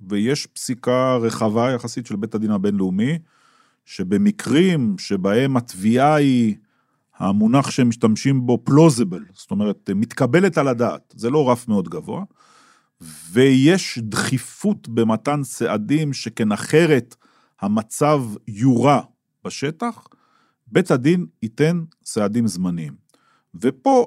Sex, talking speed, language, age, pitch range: male, 105 wpm, Hebrew, 40-59, 110-165 Hz